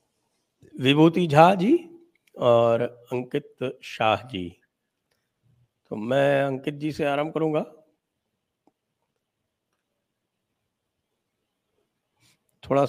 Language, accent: English, Indian